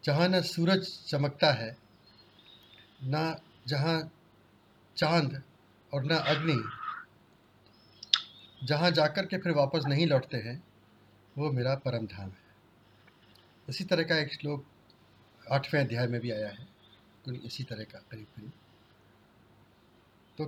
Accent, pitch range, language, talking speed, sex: native, 120-165 Hz, Hindi, 120 wpm, male